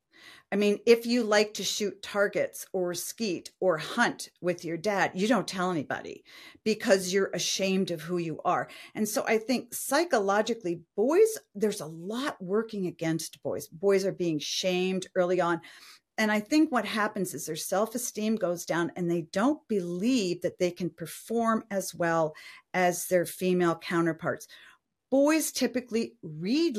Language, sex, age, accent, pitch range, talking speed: English, female, 40-59, American, 170-220 Hz, 160 wpm